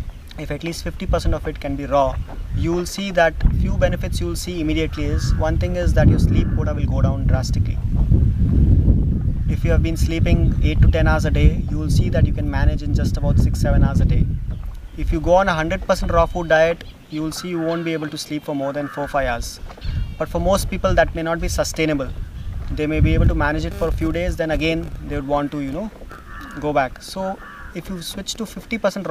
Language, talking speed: English, 245 wpm